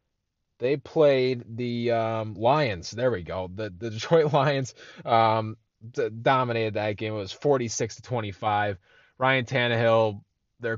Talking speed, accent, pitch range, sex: 150 wpm, American, 105-125 Hz, male